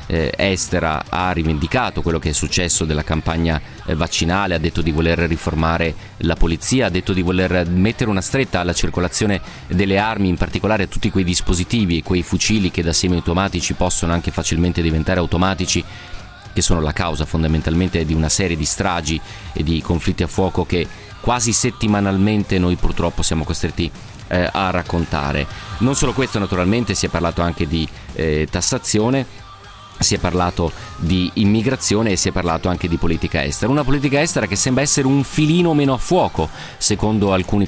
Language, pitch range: Italian, 85-105 Hz